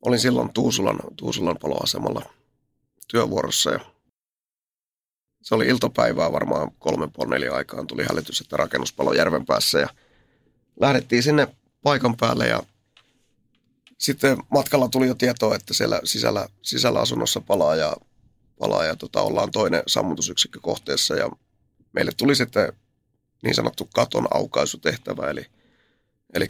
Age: 30-49